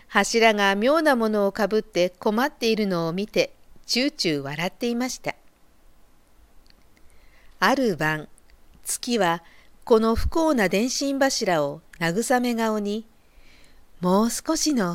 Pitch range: 180-255 Hz